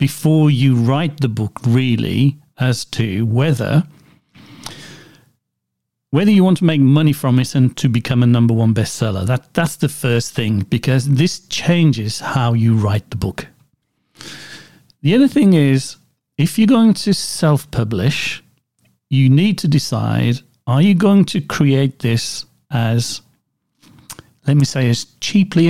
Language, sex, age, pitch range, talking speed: English, male, 50-69, 120-150 Hz, 145 wpm